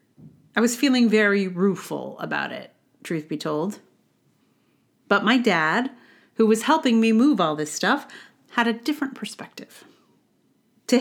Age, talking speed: 40-59, 140 wpm